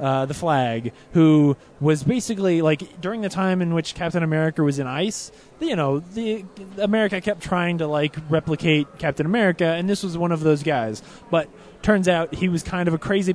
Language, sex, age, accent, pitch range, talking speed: English, male, 20-39, American, 135-175 Hz, 200 wpm